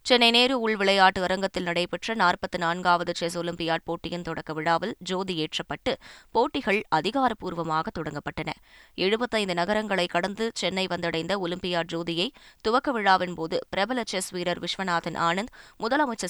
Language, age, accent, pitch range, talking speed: Tamil, 20-39, native, 170-195 Hz, 120 wpm